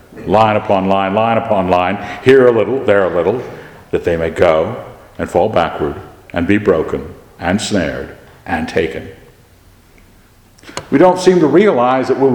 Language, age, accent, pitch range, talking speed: English, 60-79, American, 95-135 Hz, 160 wpm